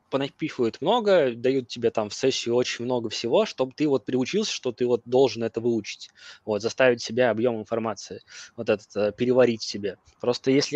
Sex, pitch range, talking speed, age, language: male, 115-145 Hz, 175 wpm, 20-39, Russian